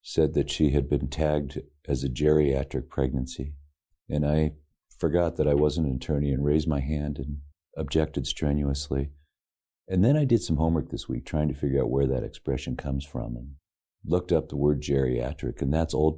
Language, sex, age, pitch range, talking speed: English, male, 40-59, 65-80 Hz, 190 wpm